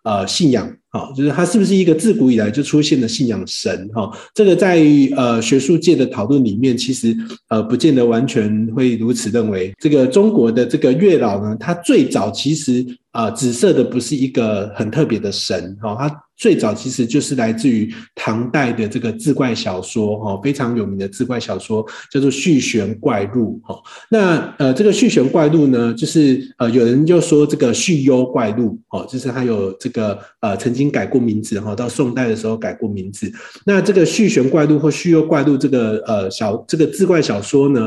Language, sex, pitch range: Chinese, male, 115-155 Hz